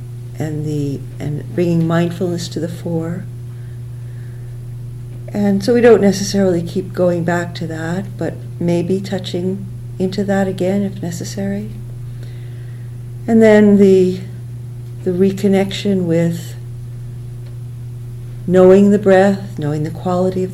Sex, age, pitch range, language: female, 50-69, 120-175 Hz, English